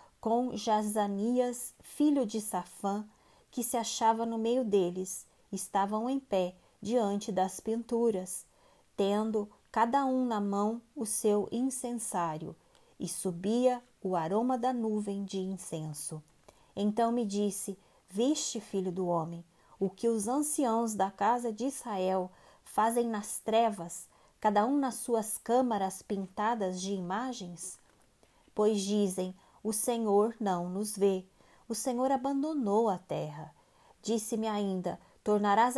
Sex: female